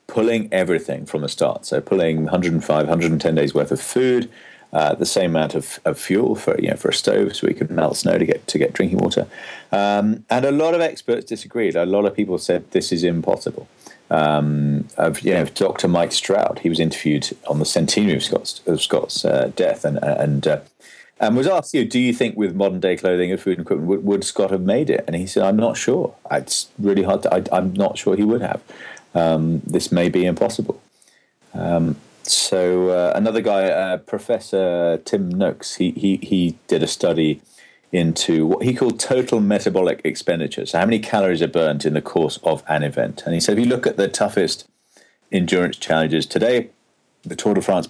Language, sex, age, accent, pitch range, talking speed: English, male, 40-59, British, 80-105 Hz, 215 wpm